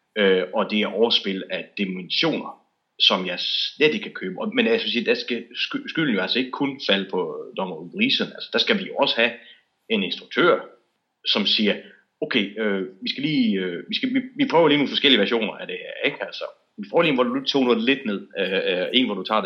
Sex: male